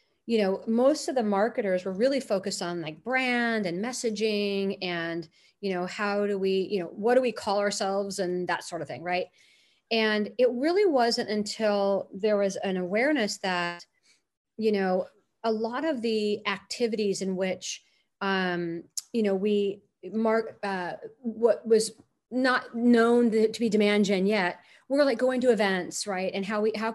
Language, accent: English, American